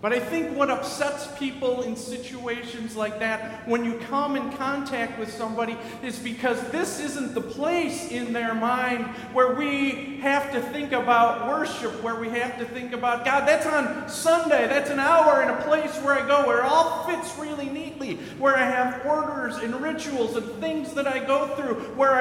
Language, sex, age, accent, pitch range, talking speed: English, male, 40-59, American, 205-285 Hz, 190 wpm